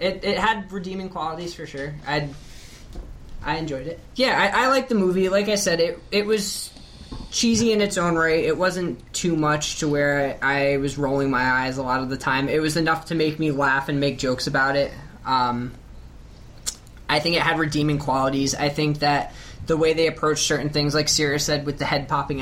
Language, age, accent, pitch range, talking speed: English, 20-39, American, 135-165 Hz, 215 wpm